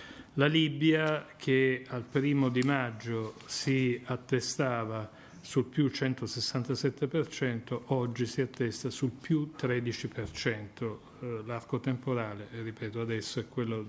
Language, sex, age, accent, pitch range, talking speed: Italian, male, 40-59, native, 115-135 Hz, 110 wpm